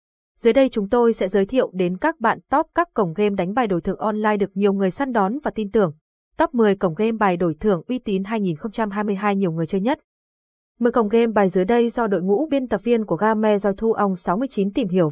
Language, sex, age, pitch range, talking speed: Vietnamese, female, 20-39, 190-240 Hz, 240 wpm